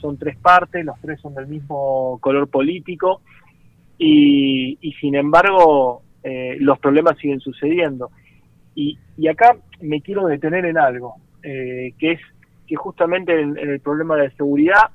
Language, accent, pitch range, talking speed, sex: Spanish, Argentinian, 140-175 Hz, 155 wpm, male